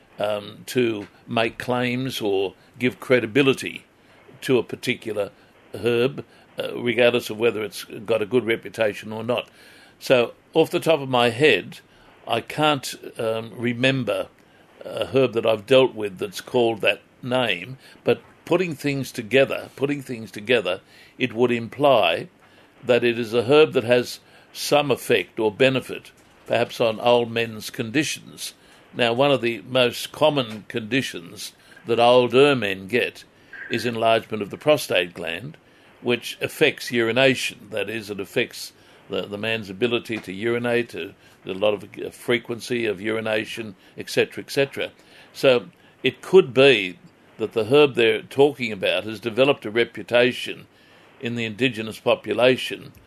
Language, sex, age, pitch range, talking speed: English, male, 60-79, 115-130 Hz, 145 wpm